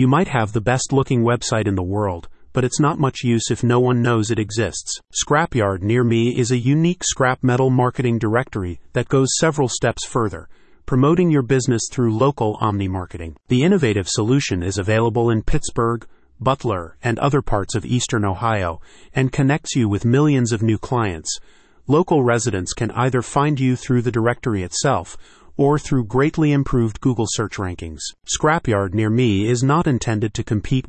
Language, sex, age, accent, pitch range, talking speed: English, male, 40-59, American, 110-135 Hz, 170 wpm